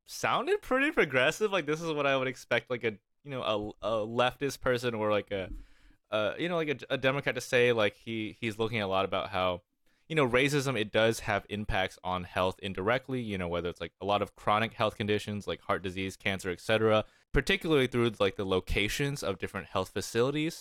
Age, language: 20-39, English